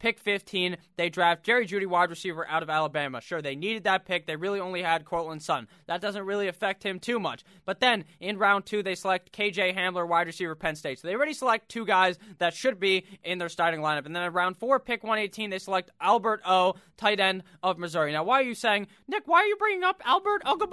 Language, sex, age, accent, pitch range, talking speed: English, male, 20-39, American, 175-230 Hz, 235 wpm